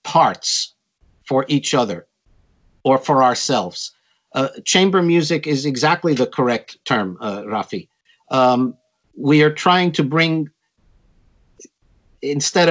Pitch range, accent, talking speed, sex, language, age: 135-175 Hz, American, 115 wpm, male, English, 50-69